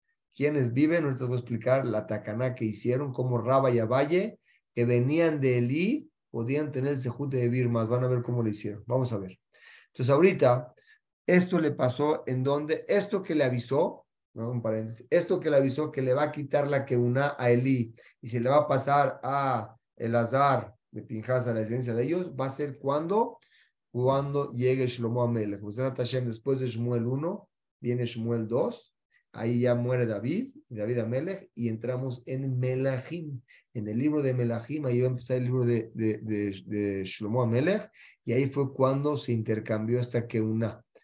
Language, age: Spanish, 40-59